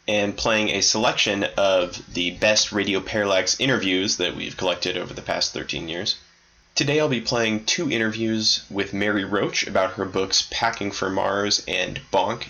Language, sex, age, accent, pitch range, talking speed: English, male, 10-29, American, 95-110 Hz, 170 wpm